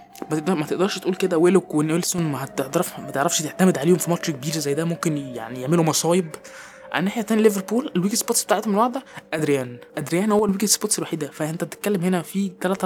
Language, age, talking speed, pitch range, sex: Arabic, 20-39, 180 wpm, 150-185 Hz, male